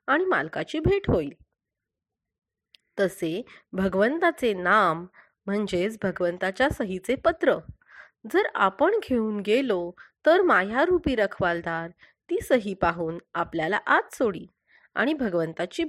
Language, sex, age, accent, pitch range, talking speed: Marathi, female, 30-49, native, 185-300 Hz, 100 wpm